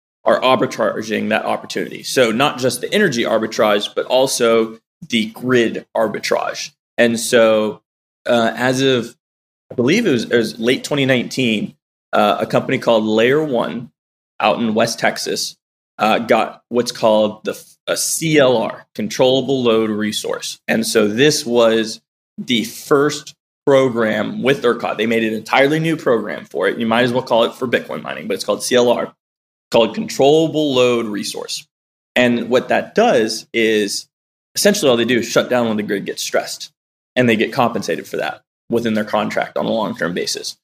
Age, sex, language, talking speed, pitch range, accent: 20-39, male, English, 165 wpm, 110-130 Hz, American